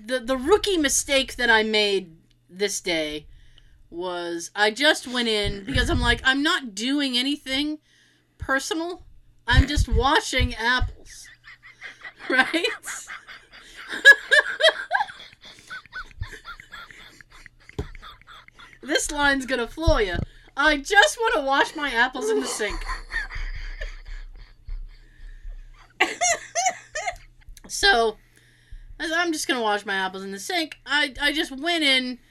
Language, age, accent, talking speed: English, 30-49, American, 105 wpm